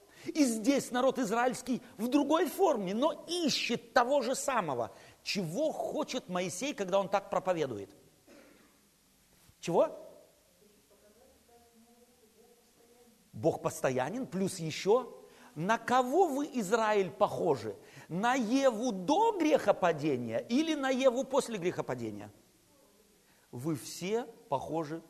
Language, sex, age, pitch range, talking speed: Russian, male, 50-69, 180-260 Hz, 100 wpm